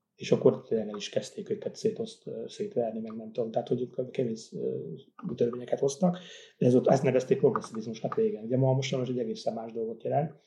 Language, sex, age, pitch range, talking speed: Hungarian, male, 30-49, 120-180 Hz, 180 wpm